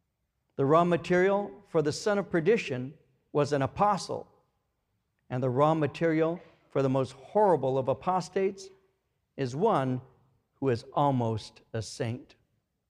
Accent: American